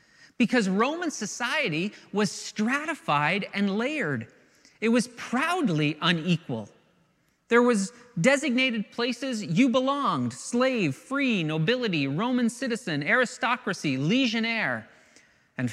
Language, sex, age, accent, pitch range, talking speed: English, male, 40-59, American, 165-235 Hz, 95 wpm